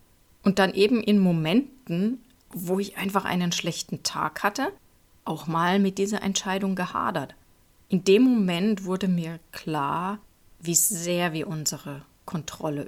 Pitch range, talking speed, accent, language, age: 155-190 Hz, 135 wpm, German, German, 30-49